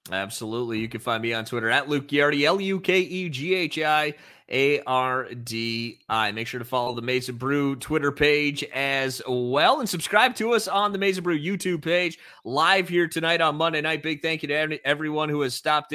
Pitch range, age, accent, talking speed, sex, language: 125-155 Hz, 30-49, American, 175 wpm, male, English